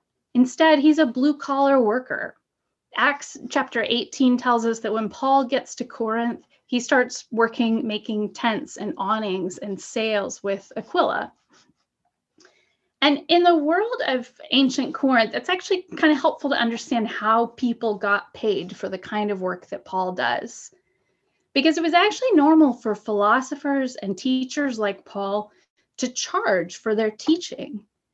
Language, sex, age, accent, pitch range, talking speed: English, female, 10-29, American, 215-285 Hz, 145 wpm